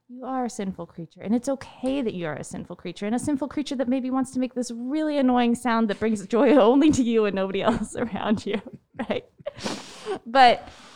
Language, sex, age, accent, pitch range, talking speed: English, female, 20-39, American, 170-220 Hz, 220 wpm